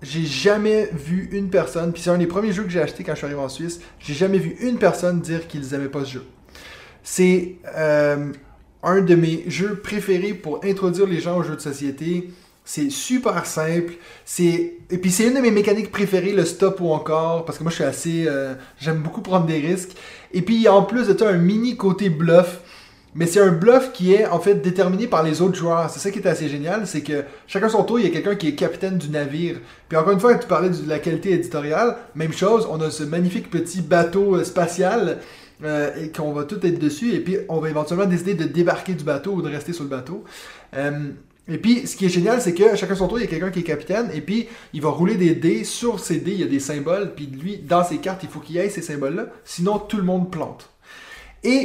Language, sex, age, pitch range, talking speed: French, male, 20-39, 160-195 Hz, 245 wpm